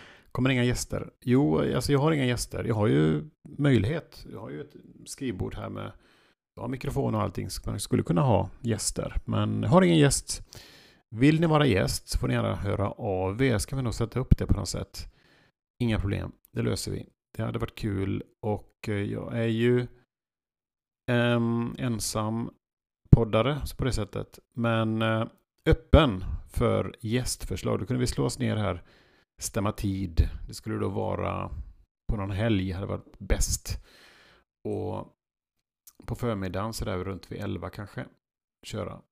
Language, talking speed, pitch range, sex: Swedish, 170 wpm, 95-125 Hz, male